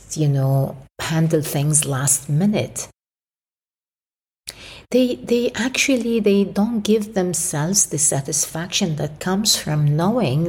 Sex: female